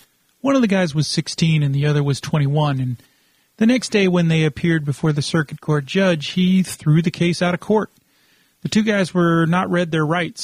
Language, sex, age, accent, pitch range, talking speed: English, male, 40-59, American, 145-185 Hz, 220 wpm